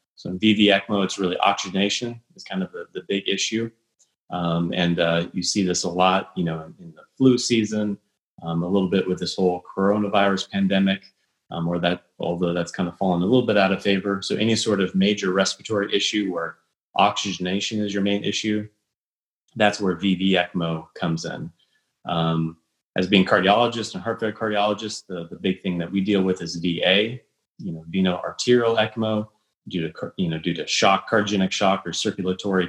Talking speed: 190 wpm